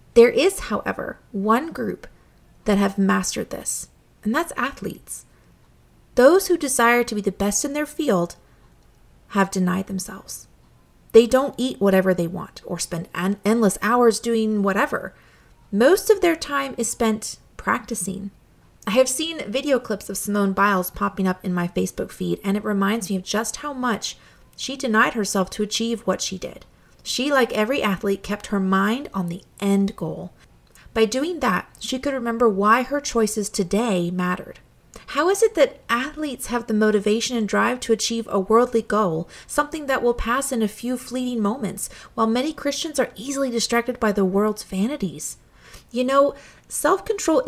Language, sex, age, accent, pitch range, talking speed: English, female, 30-49, American, 195-255 Hz, 170 wpm